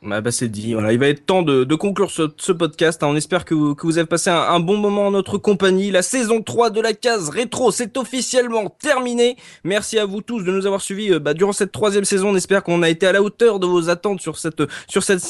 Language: French